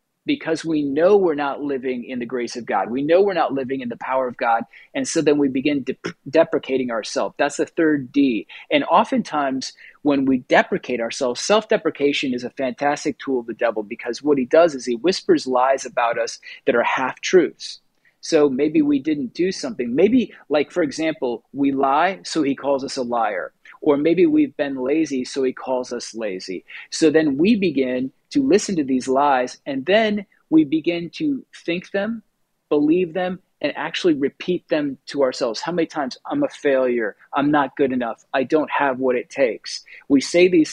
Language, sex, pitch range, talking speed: English, male, 130-200 Hz, 195 wpm